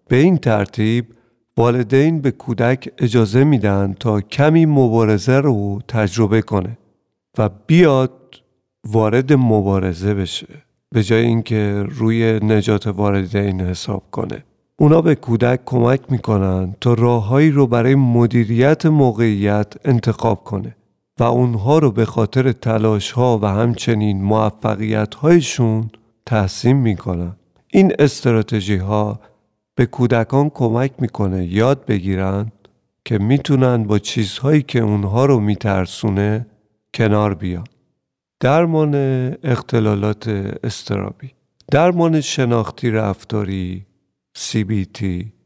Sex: male